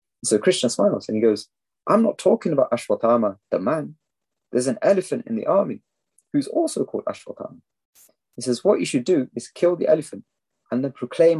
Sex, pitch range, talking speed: male, 110-140 Hz, 190 wpm